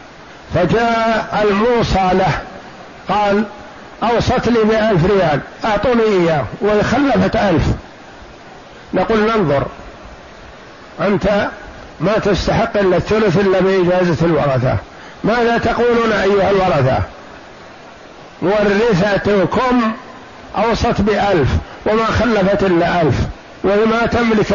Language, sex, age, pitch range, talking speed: Arabic, male, 60-79, 185-225 Hz, 90 wpm